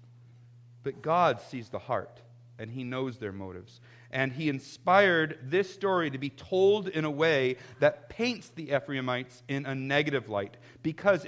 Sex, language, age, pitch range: male, English, 40-59, 120-160 Hz